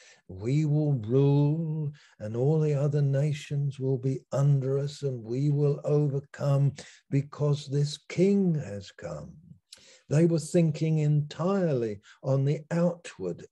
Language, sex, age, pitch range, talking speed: English, male, 60-79, 130-155 Hz, 125 wpm